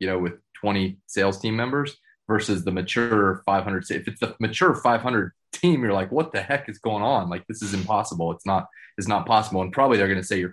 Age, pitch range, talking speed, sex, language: 30-49, 95-125 Hz, 235 wpm, male, English